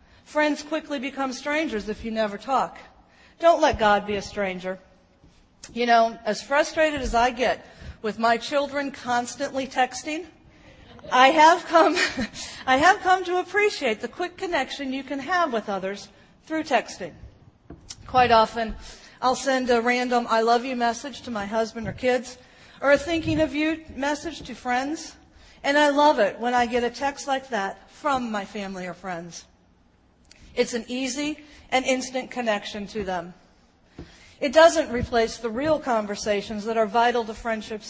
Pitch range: 220-280 Hz